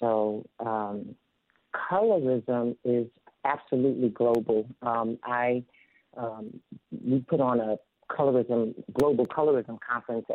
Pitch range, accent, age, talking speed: 115-140 Hz, American, 50-69, 100 wpm